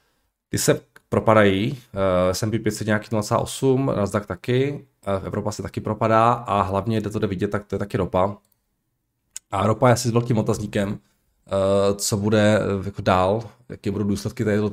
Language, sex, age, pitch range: Czech, male, 20-39, 95-110 Hz